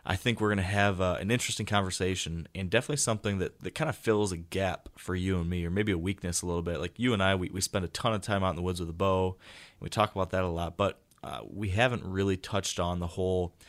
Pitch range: 90-100 Hz